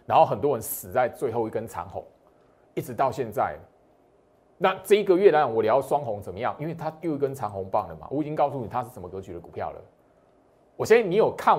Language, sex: Chinese, male